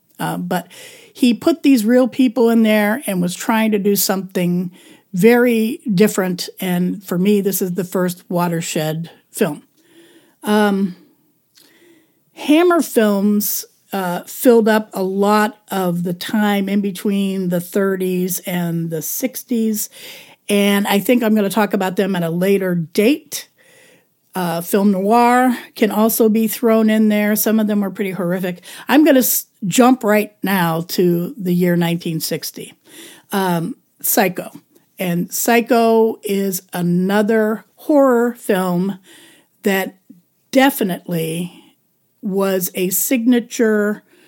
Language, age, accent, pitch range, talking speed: English, 50-69, American, 185-235 Hz, 130 wpm